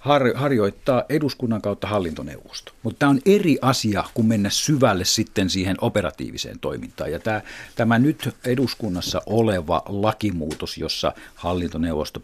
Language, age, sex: Finnish, 50-69, male